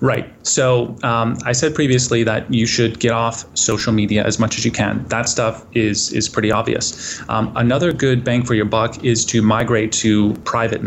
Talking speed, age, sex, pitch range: 200 wpm, 30-49, male, 110-120 Hz